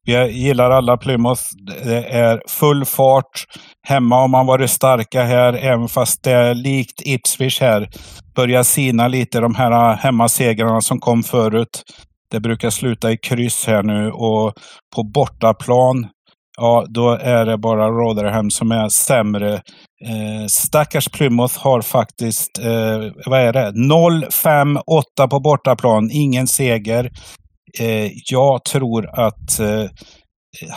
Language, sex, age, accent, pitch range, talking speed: Swedish, male, 60-79, native, 110-125 Hz, 130 wpm